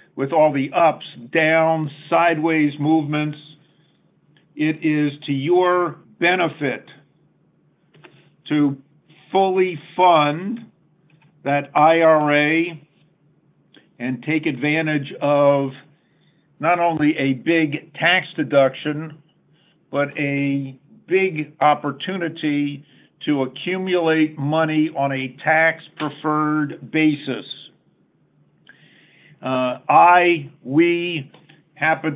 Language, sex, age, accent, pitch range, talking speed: English, male, 50-69, American, 145-165 Hz, 80 wpm